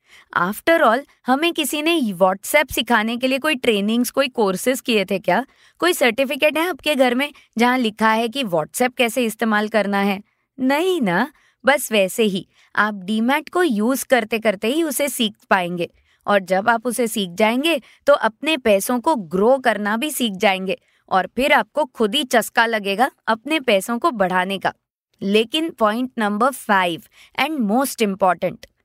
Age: 20-39